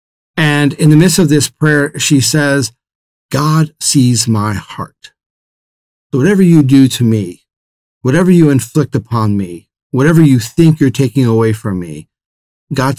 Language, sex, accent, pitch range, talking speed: English, male, American, 110-140 Hz, 150 wpm